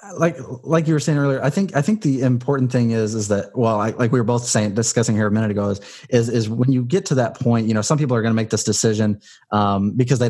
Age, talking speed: 30-49, 290 wpm